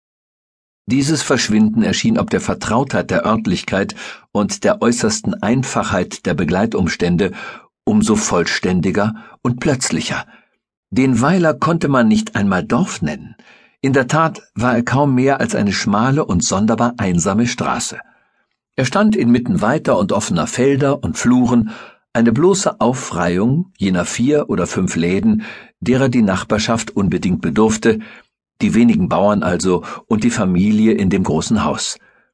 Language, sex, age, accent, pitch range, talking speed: German, male, 60-79, German, 110-150 Hz, 135 wpm